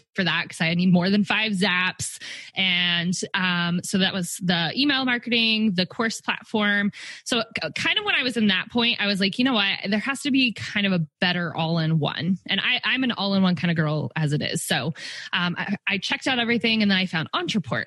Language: English